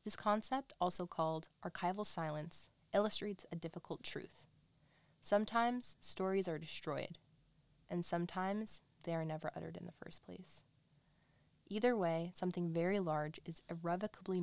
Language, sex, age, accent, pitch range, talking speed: English, female, 20-39, American, 155-190 Hz, 130 wpm